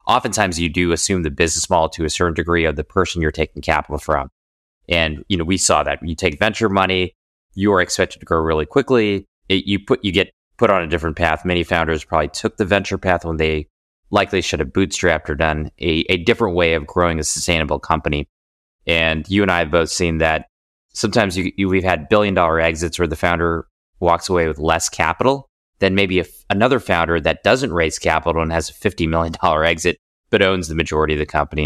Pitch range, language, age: 75-95 Hz, English, 30-49